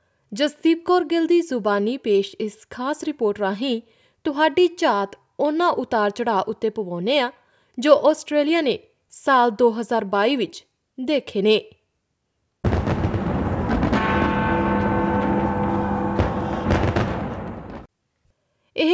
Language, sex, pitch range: Punjabi, female, 205-275 Hz